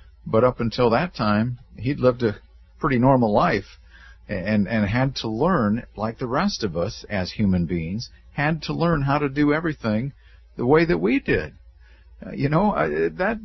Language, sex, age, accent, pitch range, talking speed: English, male, 50-69, American, 100-145 Hz, 185 wpm